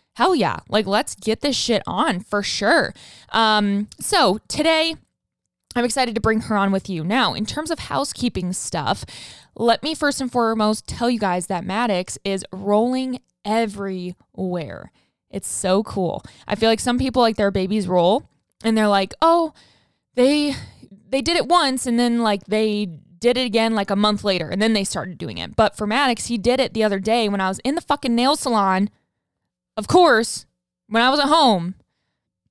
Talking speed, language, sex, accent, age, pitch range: 190 wpm, English, female, American, 20-39, 195-255 Hz